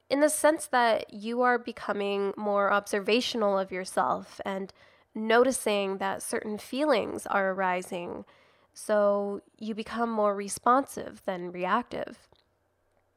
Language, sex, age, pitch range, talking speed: English, female, 10-29, 200-245 Hz, 115 wpm